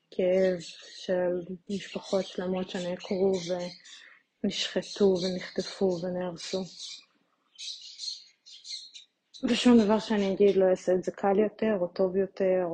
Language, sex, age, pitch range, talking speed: Hebrew, female, 20-39, 180-205 Hz, 100 wpm